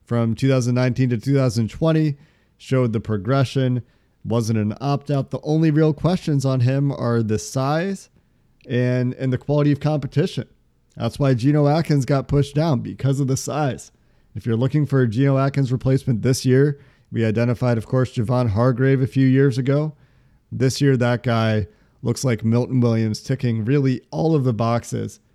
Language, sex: English, male